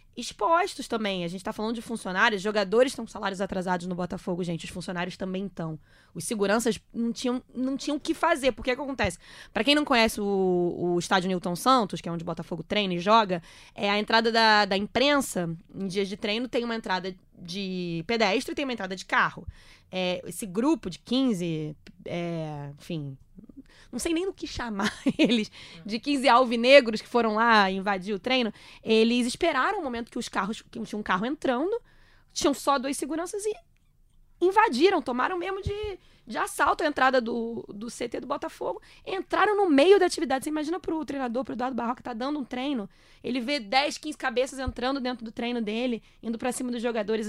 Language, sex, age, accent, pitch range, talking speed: Portuguese, female, 20-39, Brazilian, 195-265 Hz, 200 wpm